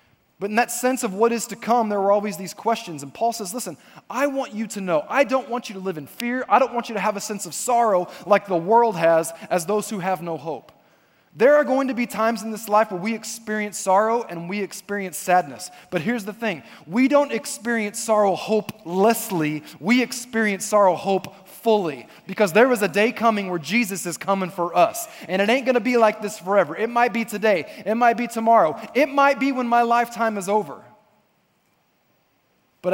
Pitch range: 185-235 Hz